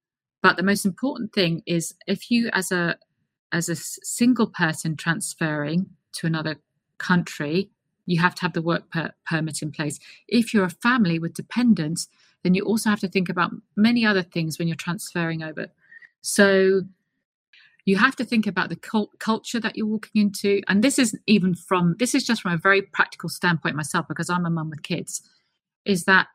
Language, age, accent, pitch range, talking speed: English, 50-69, British, 170-210 Hz, 185 wpm